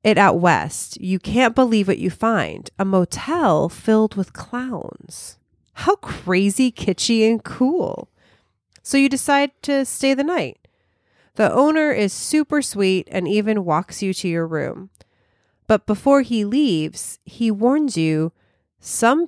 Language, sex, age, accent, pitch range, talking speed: English, female, 30-49, American, 155-240 Hz, 145 wpm